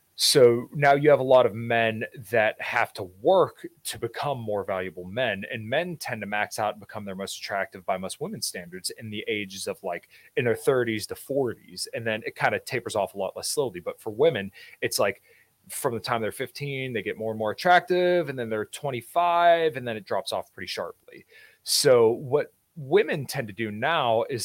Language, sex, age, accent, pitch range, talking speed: English, male, 30-49, American, 100-140 Hz, 215 wpm